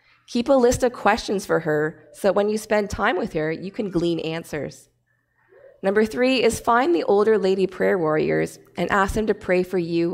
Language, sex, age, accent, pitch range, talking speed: English, female, 20-39, American, 165-215 Hz, 205 wpm